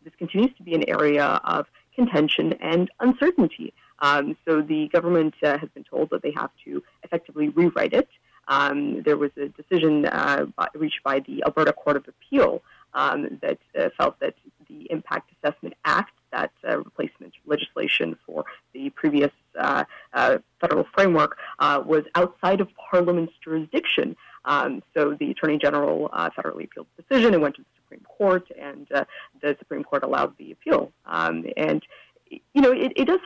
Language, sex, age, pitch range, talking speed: English, female, 30-49, 150-210 Hz, 170 wpm